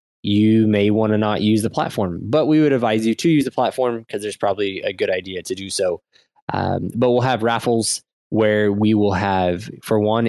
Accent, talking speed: American, 215 wpm